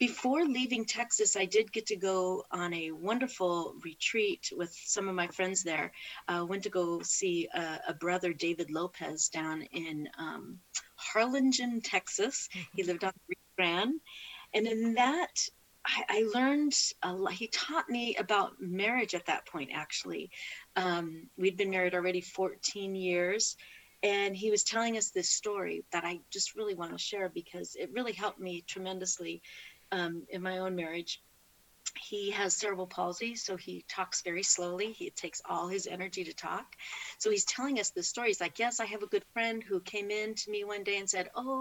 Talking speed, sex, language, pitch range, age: 180 wpm, female, English, 180-235 Hz, 40-59